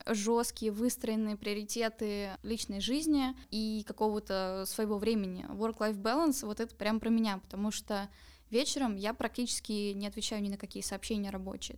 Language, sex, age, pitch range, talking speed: Russian, female, 10-29, 205-235 Hz, 150 wpm